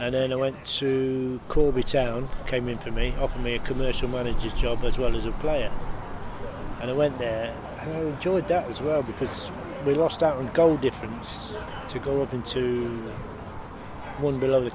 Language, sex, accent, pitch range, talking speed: English, male, British, 120-135 Hz, 185 wpm